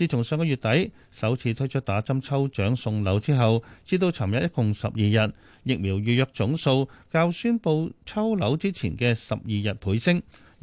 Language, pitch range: Chinese, 110-150 Hz